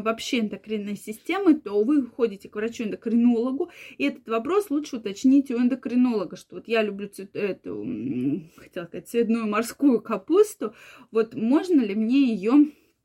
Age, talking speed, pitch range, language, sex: 20-39, 145 wpm, 215-275 Hz, Russian, female